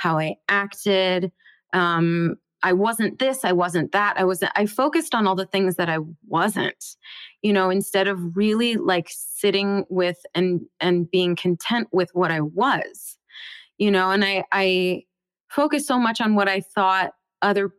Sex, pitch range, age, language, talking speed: female, 180-235 Hz, 20-39, English, 170 wpm